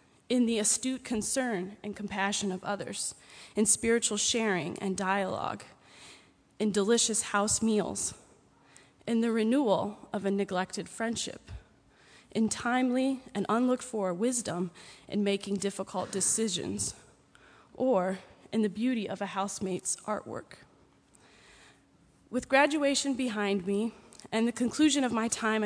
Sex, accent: female, American